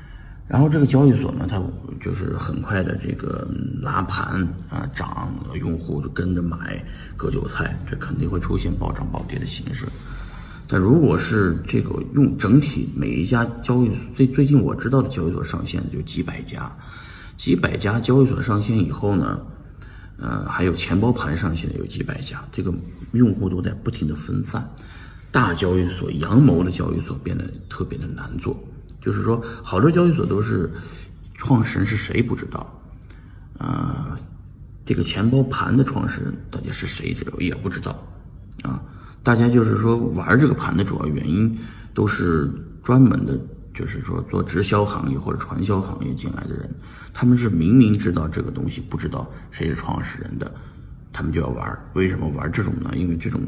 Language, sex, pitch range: Chinese, male, 90-130 Hz